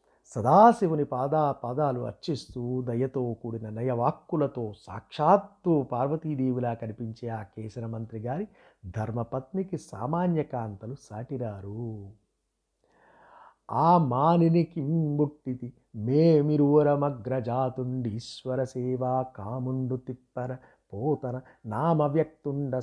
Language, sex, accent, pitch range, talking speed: Telugu, male, native, 120-150 Hz, 70 wpm